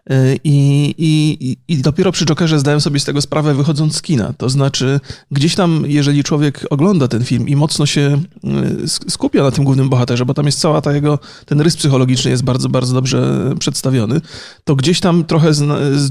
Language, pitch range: Polish, 135-165 Hz